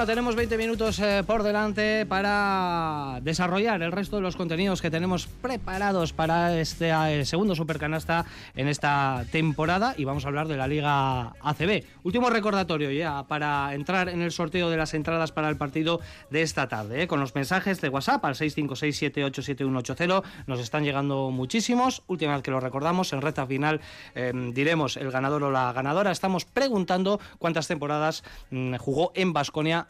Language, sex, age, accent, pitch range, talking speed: Spanish, male, 20-39, Spanish, 140-185 Hz, 170 wpm